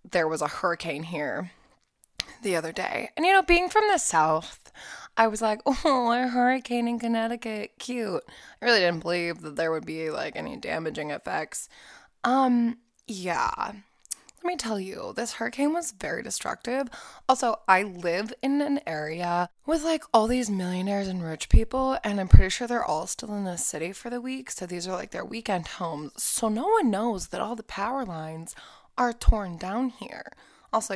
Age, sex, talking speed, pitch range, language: 20-39, female, 185 wpm, 165-235 Hz, English